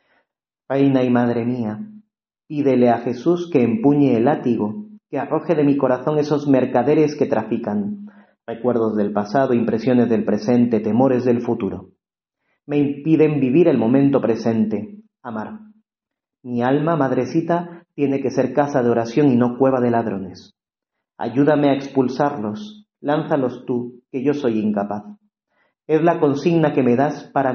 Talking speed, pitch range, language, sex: 145 wpm, 120-150 Hz, Spanish, male